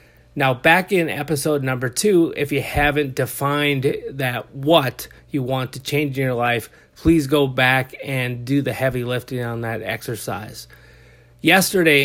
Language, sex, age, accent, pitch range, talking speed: English, male, 30-49, American, 125-150 Hz, 155 wpm